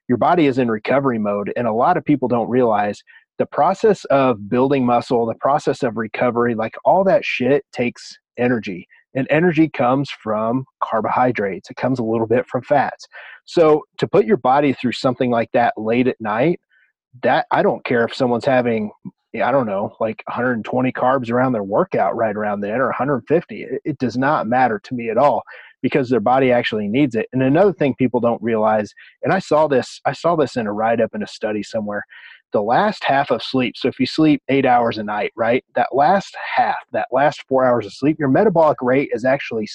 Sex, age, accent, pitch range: male, 30-49, American, 115-140 Hz